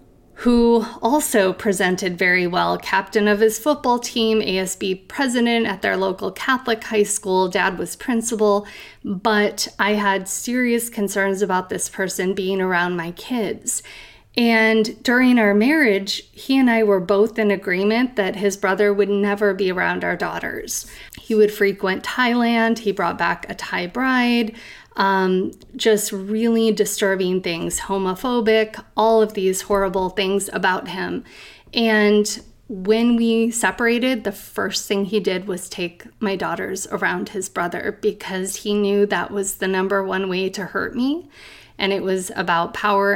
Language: English